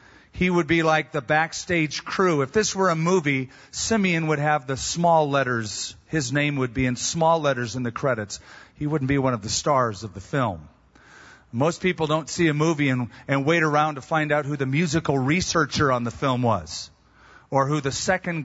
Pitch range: 135-180 Hz